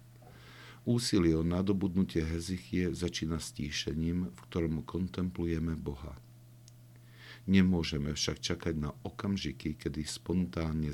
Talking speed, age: 100 wpm, 50-69